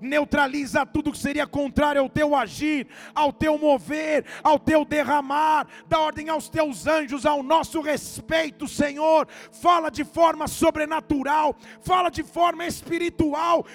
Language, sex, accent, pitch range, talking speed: English, male, Brazilian, 240-285 Hz, 135 wpm